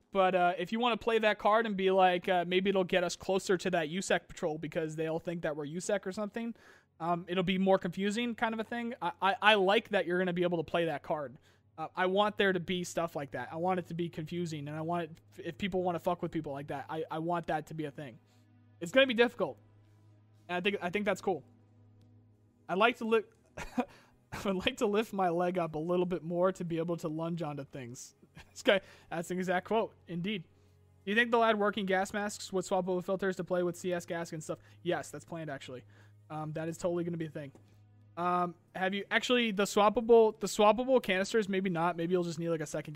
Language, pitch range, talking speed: English, 155-195 Hz, 250 wpm